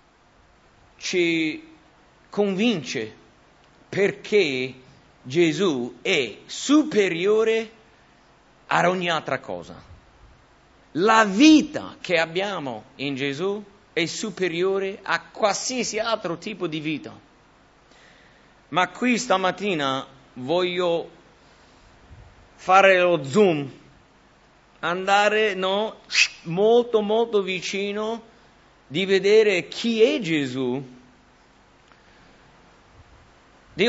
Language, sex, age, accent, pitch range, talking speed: English, male, 50-69, Italian, 150-220 Hz, 75 wpm